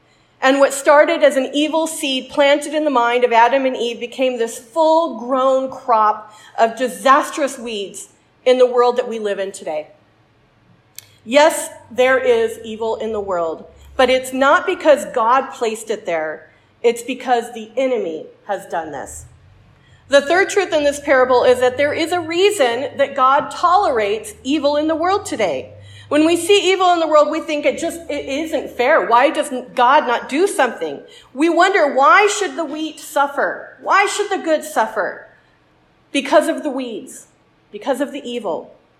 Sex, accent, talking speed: female, American, 170 wpm